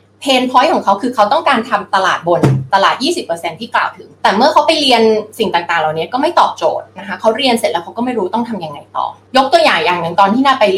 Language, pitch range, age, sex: Thai, 195-285 Hz, 20-39, female